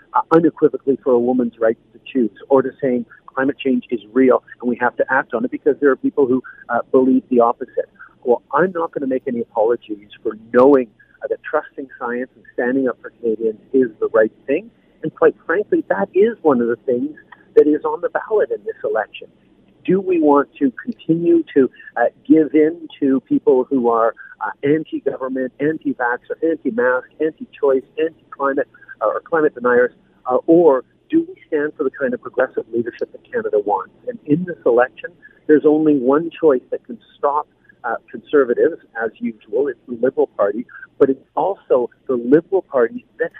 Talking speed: 185 wpm